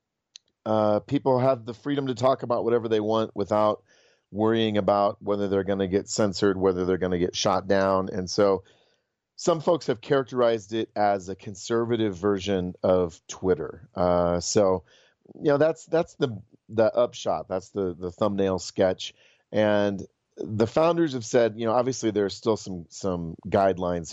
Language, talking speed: English, 165 wpm